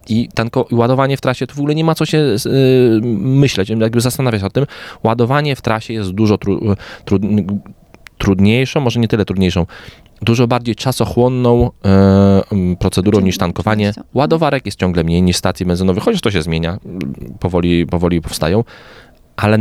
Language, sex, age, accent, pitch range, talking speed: Polish, male, 20-39, native, 90-120 Hz, 150 wpm